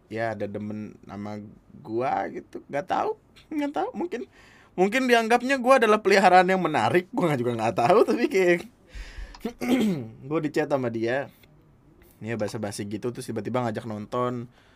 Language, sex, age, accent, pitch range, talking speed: Indonesian, male, 20-39, native, 115-180 Hz, 145 wpm